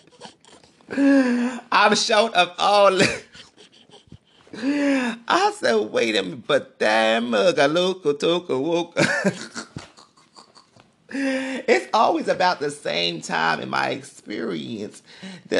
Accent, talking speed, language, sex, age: American, 85 wpm, English, male, 30-49